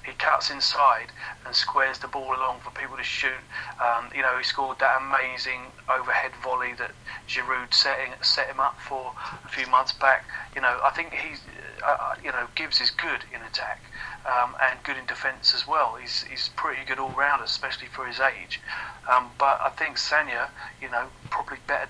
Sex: male